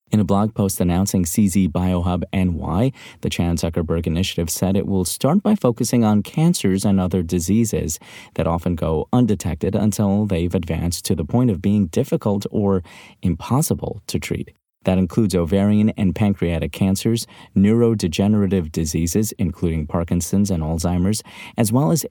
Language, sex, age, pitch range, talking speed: English, male, 30-49, 90-110 Hz, 150 wpm